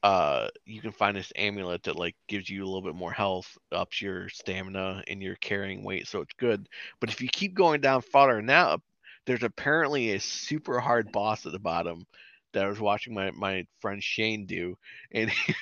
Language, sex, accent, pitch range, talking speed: English, male, American, 105-160 Hz, 200 wpm